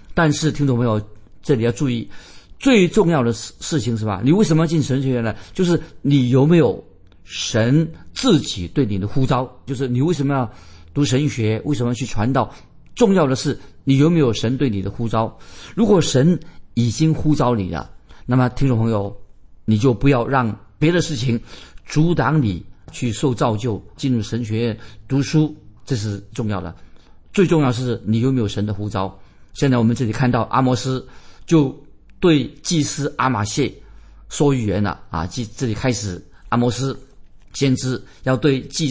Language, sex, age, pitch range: Chinese, male, 50-69, 105-145 Hz